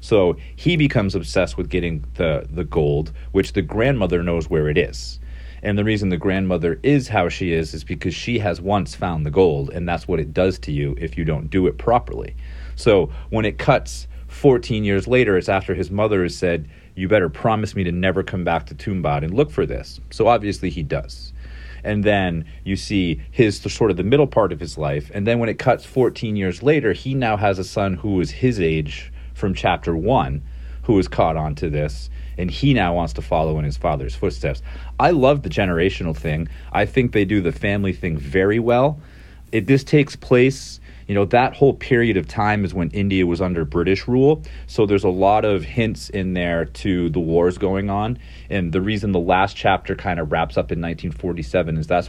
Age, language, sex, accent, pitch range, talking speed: 30-49, English, male, American, 75-105 Hz, 215 wpm